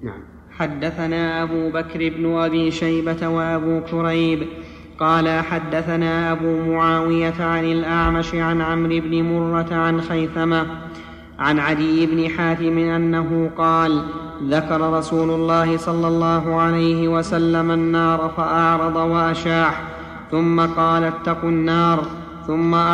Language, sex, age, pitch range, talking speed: Arabic, male, 30-49, 165-170 Hz, 105 wpm